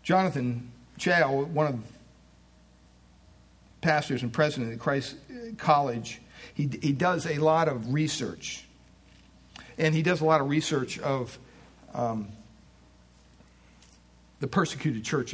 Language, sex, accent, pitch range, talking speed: English, male, American, 110-160 Hz, 115 wpm